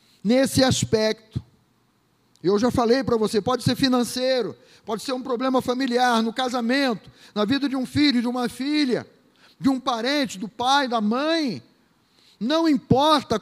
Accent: Brazilian